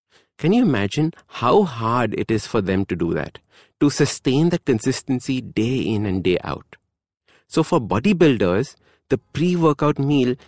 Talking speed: 155 wpm